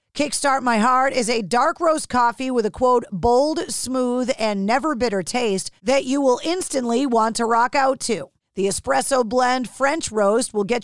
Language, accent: English, American